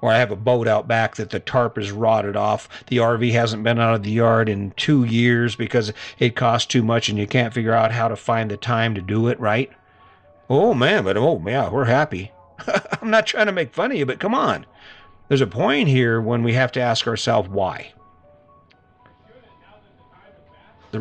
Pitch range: 110-140 Hz